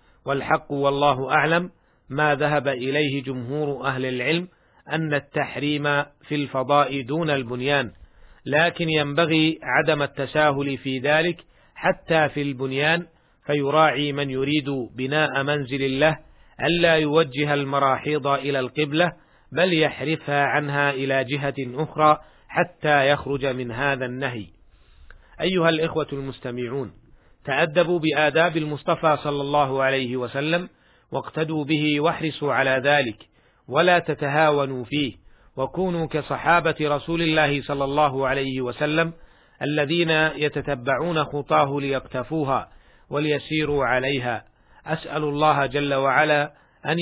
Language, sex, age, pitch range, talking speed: Arabic, male, 40-59, 135-155 Hz, 105 wpm